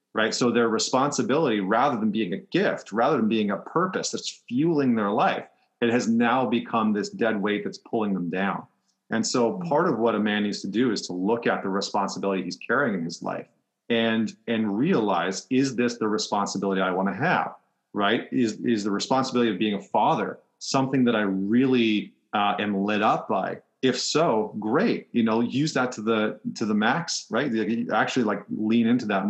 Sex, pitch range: male, 100-115 Hz